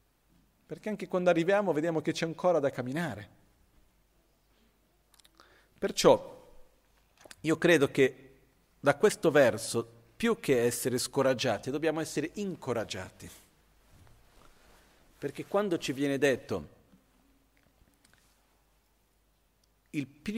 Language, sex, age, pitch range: Italian, male, 40-59, 130-175 Hz